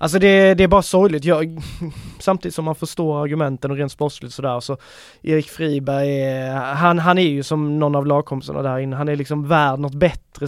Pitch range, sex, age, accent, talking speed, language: 140-160 Hz, male, 20-39, native, 205 wpm, Swedish